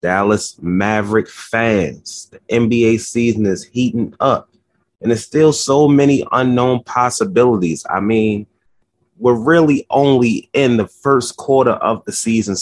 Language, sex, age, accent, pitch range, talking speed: English, male, 30-49, American, 105-135 Hz, 135 wpm